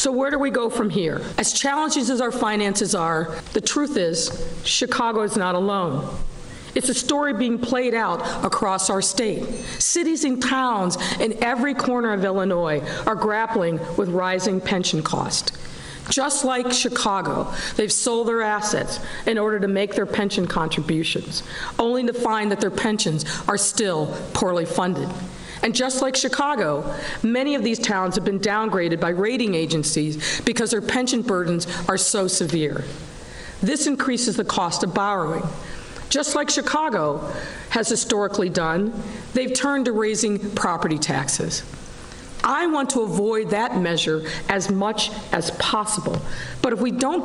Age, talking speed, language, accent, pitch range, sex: 50-69, 150 wpm, English, American, 180-245 Hz, female